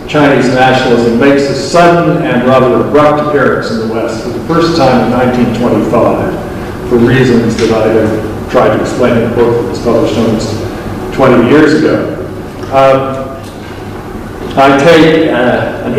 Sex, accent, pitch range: male, American, 115-140 Hz